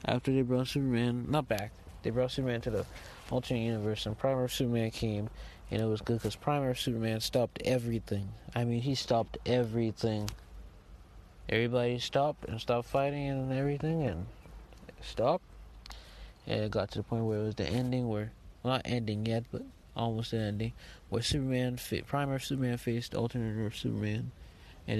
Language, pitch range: English, 100-120 Hz